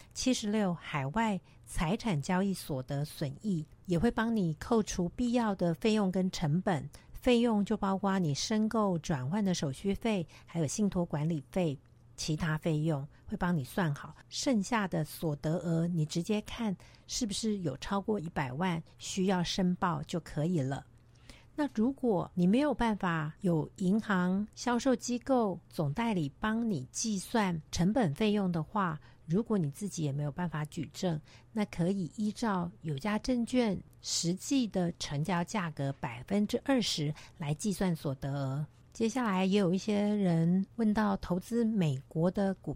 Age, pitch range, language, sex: 60-79, 155-210 Hz, Chinese, female